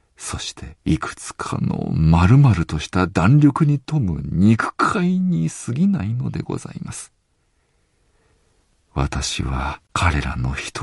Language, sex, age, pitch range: Japanese, male, 50-69, 75-120 Hz